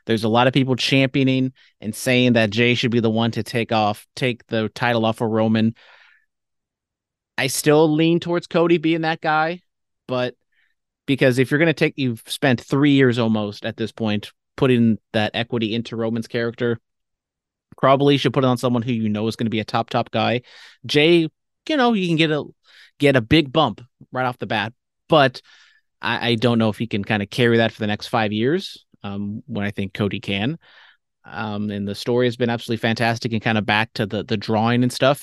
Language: English